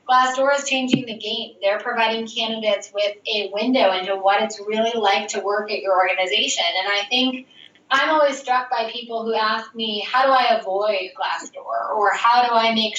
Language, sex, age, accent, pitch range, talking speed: English, female, 10-29, American, 200-240 Hz, 195 wpm